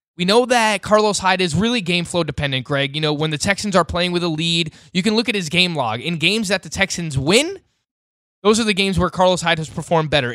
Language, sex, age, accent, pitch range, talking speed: English, male, 20-39, American, 155-195 Hz, 255 wpm